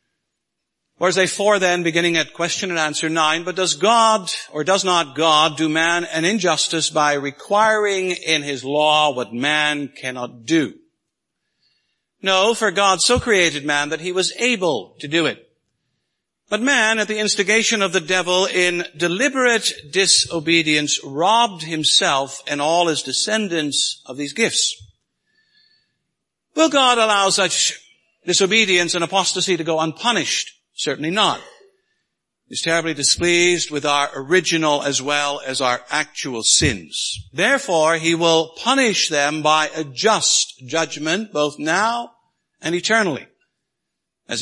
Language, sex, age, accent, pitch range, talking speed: English, male, 60-79, American, 145-200 Hz, 135 wpm